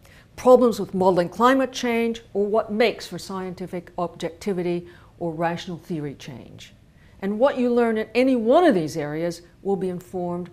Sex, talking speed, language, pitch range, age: female, 160 wpm, English, 135-215 Hz, 50-69